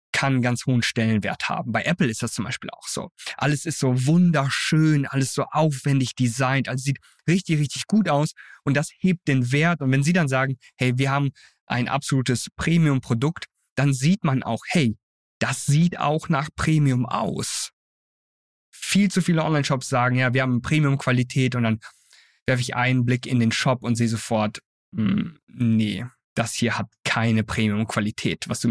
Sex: male